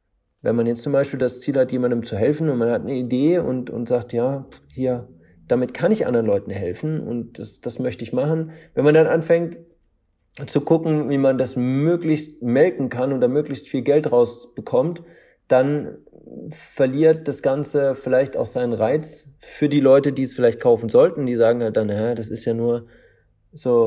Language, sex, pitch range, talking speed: German, male, 120-155 Hz, 195 wpm